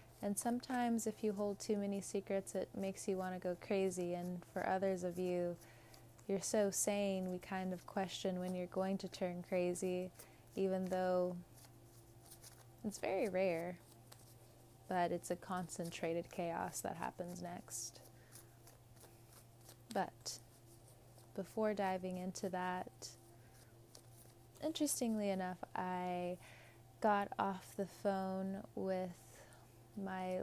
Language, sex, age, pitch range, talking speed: English, female, 20-39, 115-190 Hz, 120 wpm